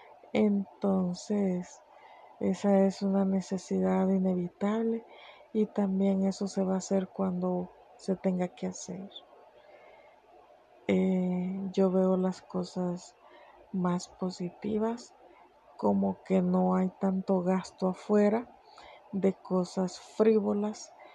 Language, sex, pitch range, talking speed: Spanish, female, 180-195 Hz, 100 wpm